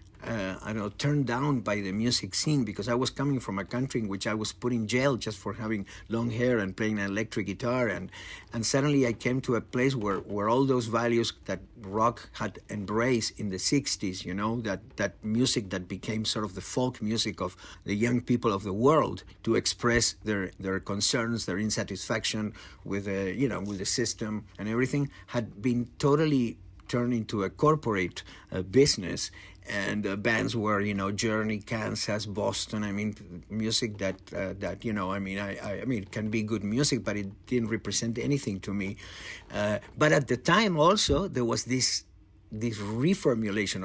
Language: English